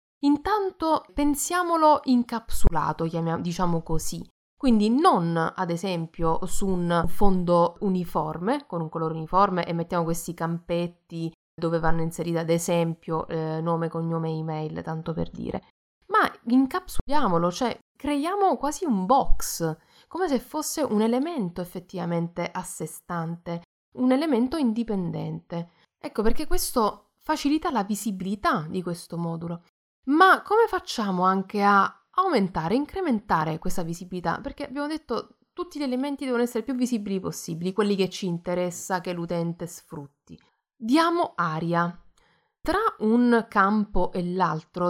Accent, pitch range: native, 170-250 Hz